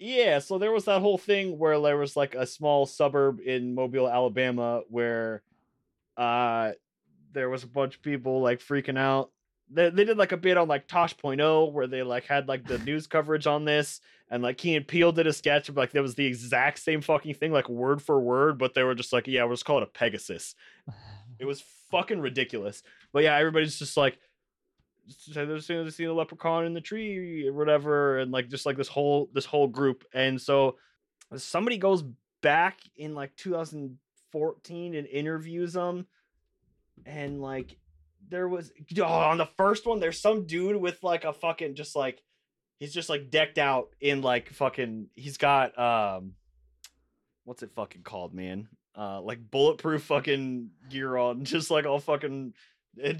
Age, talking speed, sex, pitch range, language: 20-39, 185 wpm, male, 130-160 Hz, English